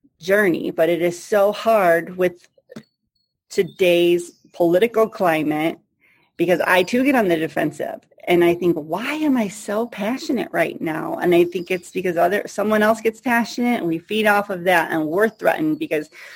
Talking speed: 170 wpm